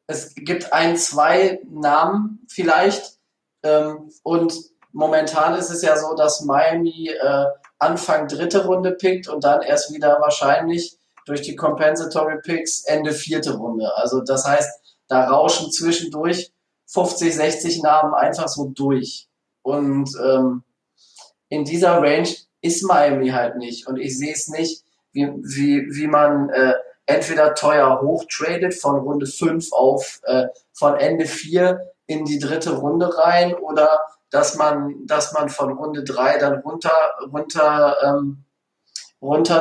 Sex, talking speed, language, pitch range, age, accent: male, 135 wpm, German, 140-165 Hz, 20-39, German